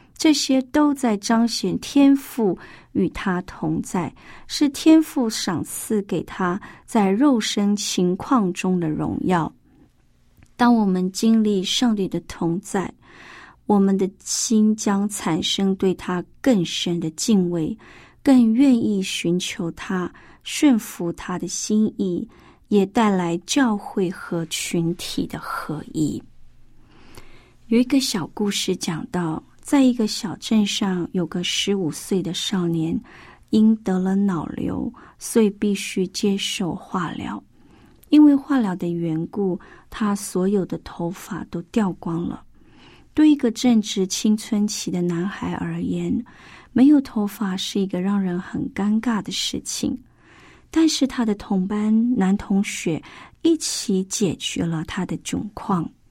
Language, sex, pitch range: Chinese, female, 180-230 Hz